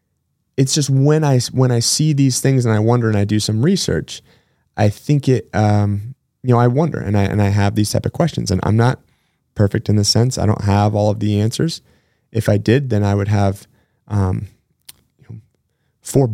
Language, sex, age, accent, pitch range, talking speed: English, male, 20-39, American, 105-130 Hz, 215 wpm